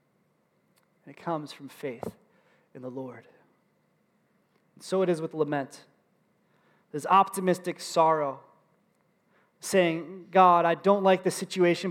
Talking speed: 115 wpm